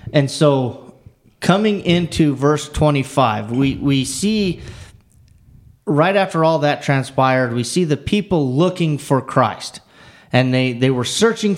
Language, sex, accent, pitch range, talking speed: English, male, American, 120-165 Hz, 135 wpm